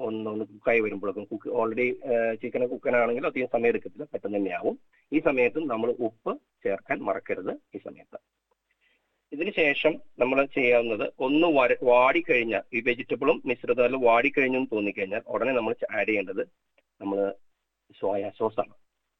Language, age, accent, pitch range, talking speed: Malayalam, 30-49, native, 115-145 Hz, 130 wpm